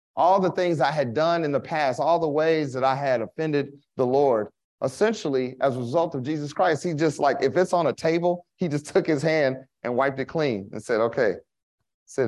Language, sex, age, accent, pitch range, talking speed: English, male, 30-49, American, 125-165 Hz, 225 wpm